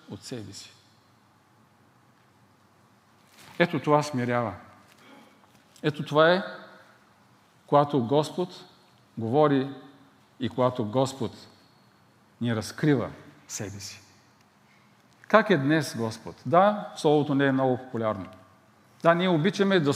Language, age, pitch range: Bulgarian, 50-69, 115-175 Hz